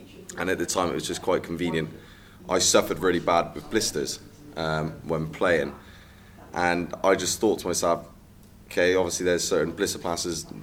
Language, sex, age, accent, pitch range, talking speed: English, male, 20-39, British, 80-90 Hz, 175 wpm